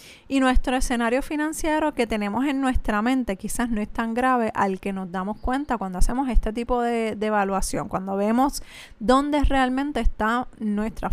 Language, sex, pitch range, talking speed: Spanish, female, 215-260 Hz, 175 wpm